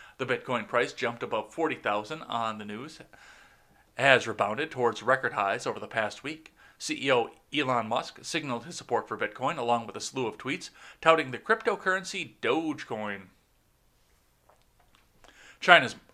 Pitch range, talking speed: 110-165 Hz, 140 wpm